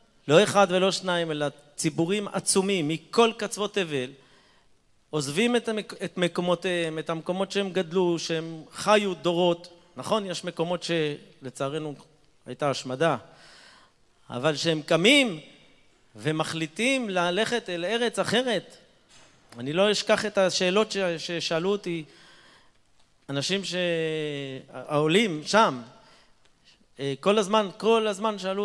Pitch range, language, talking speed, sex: 160-200 Hz, Hebrew, 105 wpm, male